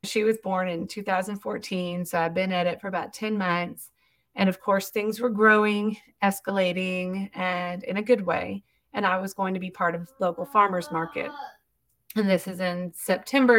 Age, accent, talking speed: 30-49, American, 185 wpm